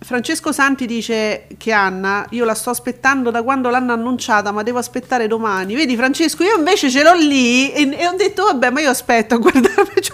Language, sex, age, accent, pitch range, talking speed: Italian, female, 40-59, native, 220-265 Hz, 200 wpm